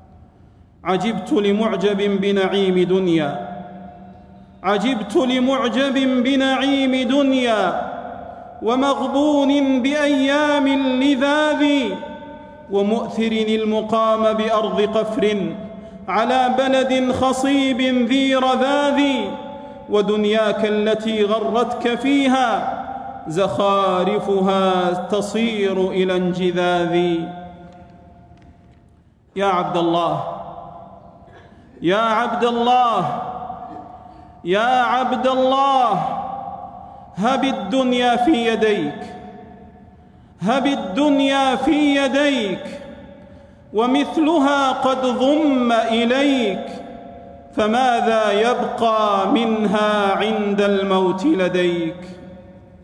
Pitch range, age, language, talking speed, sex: 200-270 Hz, 40-59, Arabic, 60 wpm, male